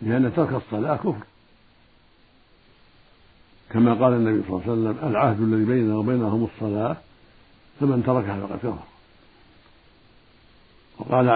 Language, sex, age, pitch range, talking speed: Arabic, male, 60-79, 110-125 Hz, 110 wpm